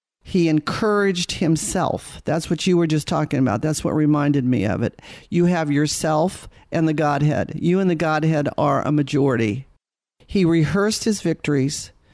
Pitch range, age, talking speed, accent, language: 150-175 Hz, 50-69, 165 wpm, American, English